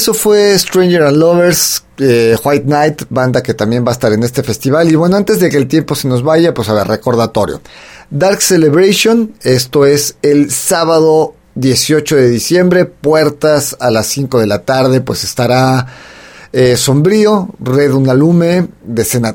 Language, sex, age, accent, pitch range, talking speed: Spanish, male, 40-59, Mexican, 130-170 Hz, 165 wpm